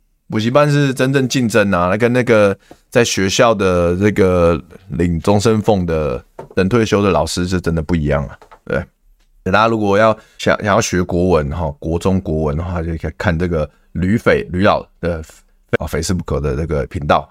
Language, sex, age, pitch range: Chinese, male, 20-39, 90-145 Hz